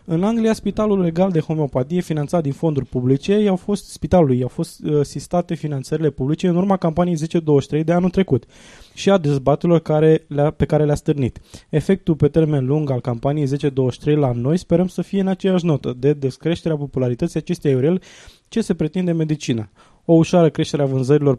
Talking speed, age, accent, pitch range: 175 wpm, 20-39, native, 130-170 Hz